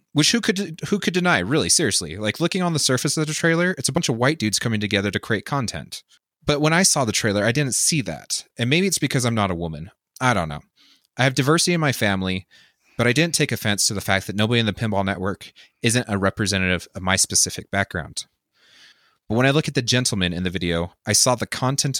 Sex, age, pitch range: male, 30-49, 95-130 Hz